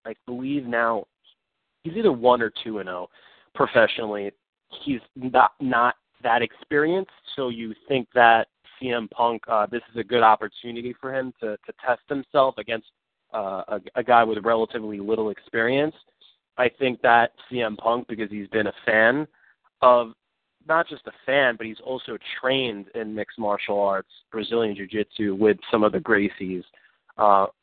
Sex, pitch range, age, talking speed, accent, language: male, 110-130 Hz, 30-49, 160 wpm, American, English